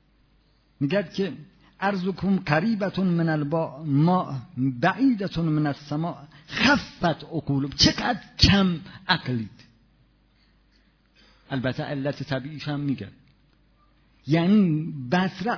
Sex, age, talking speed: male, 50-69, 90 wpm